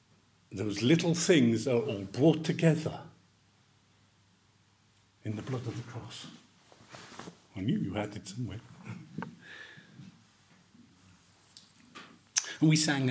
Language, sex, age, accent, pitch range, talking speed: English, male, 50-69, British, 105-125 Hz, 100 wpm